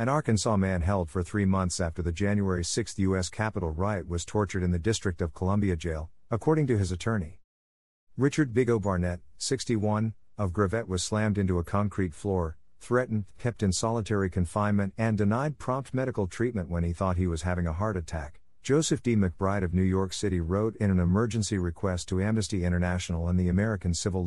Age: 50-69